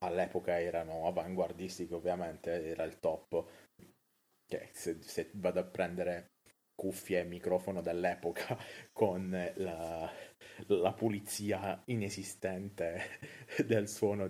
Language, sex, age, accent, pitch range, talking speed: Italian, male, 30-49, native, 90-100 Hz, 100 wpm